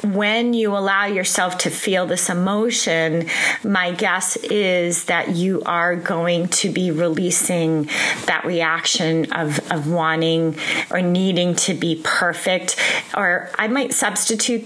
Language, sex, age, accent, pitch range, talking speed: English, female, 30-49, American, 170-210 Hz, 130 wpm